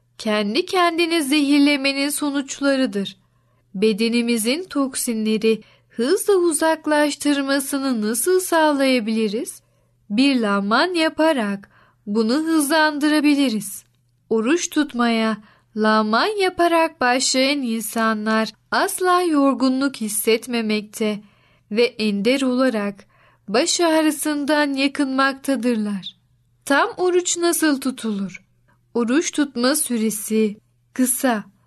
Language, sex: Turkish, female